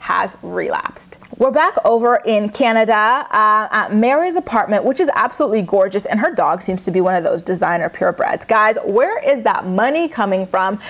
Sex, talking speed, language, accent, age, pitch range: female, 180 wpm, English, American, 20-39, 195-255 Hz